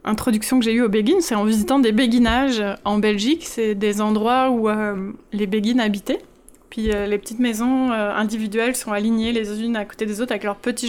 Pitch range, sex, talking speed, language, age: 205-245 Hz, female, 215 wpm, French, 20-39